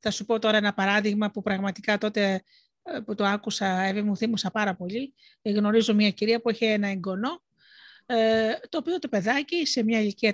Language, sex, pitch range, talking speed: Greek, female, 195-245 Hz, 175 wpm